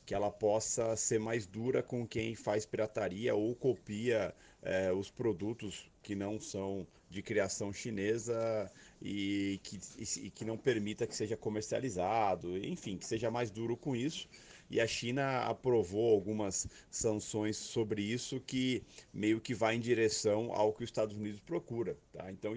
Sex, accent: male, Brazilian